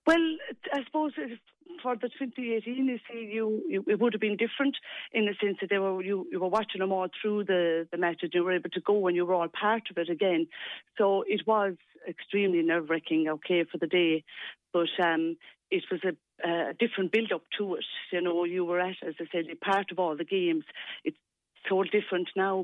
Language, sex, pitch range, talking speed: English, female, 165-200 Hz, 210 wpm